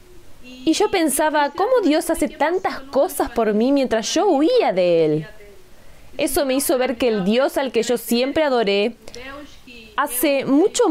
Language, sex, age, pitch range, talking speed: Spanish, female, 20-39, 215-280 Hz, 160 wpm